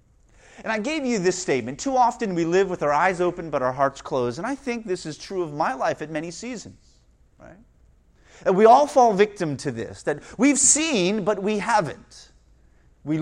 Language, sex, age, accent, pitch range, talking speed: English, male, 30-49, American, 145-235 Hz, 205 wpm